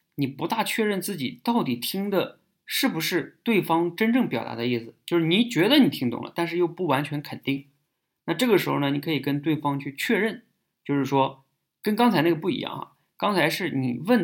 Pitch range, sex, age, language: 125-160 Hz, male, 20-39, Chinese